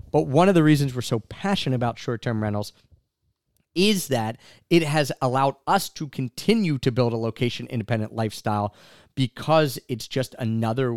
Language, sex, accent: English, male, American